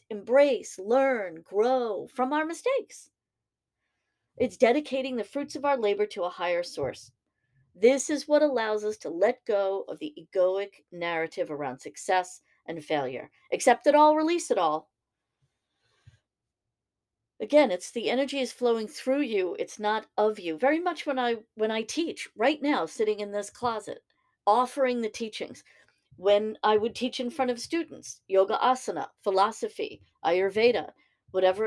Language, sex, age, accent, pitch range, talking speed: English, female, 40-59, American, 190-260 Hz, 150 wpm